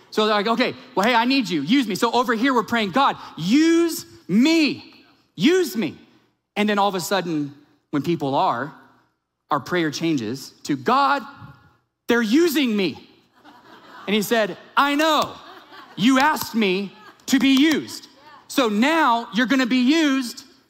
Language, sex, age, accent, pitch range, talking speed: English, male, 30-49, American, 200-265 Hz, 160 wpm